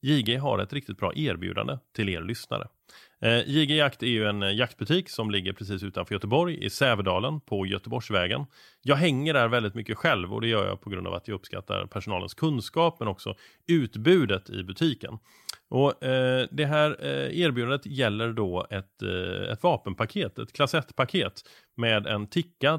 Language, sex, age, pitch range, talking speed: Swedish, male, 30-49, 105-150 Hz, 160 wpm